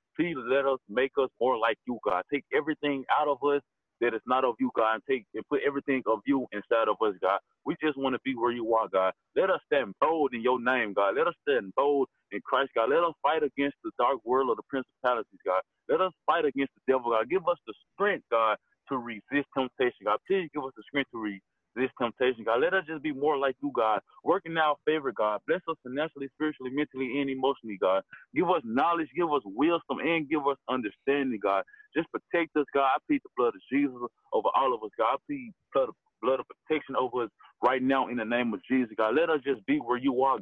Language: English